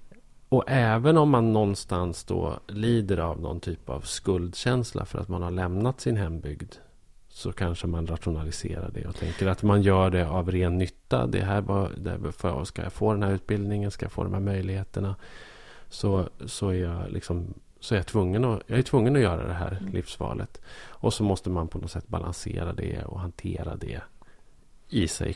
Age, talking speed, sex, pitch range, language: 30-49, 190 wpm, male, 90-110 Hz, Swedish